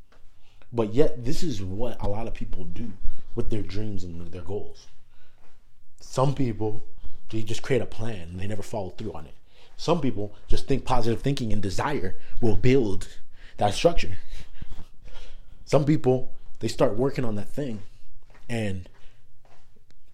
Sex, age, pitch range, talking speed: male, 30-49, 105-135 Hz, 150 wpm